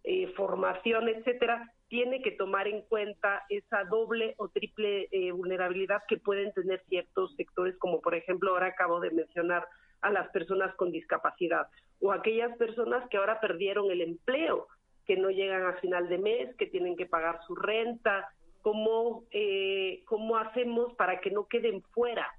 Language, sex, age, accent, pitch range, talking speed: Spanish, female, 40-59, Mexican, 180-220 Hz, 165 wpm